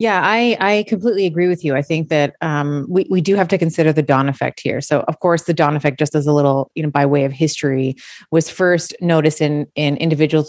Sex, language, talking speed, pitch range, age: female, English, 245 wpm, 145-175 Hz, 30-49